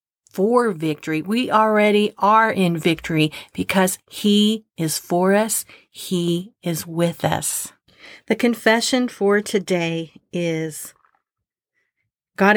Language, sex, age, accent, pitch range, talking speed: English, female, 50-69, American, 165-200 Hz, 105 wpm